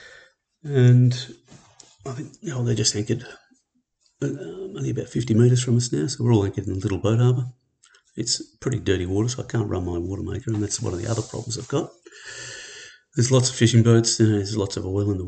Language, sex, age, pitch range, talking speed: English, male, 40-59, 100-125 Hz, 230 wpm